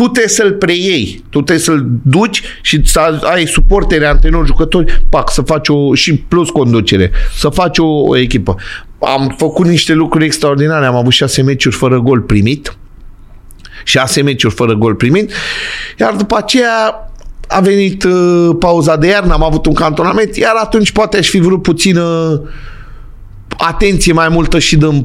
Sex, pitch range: male, 135-190 Hz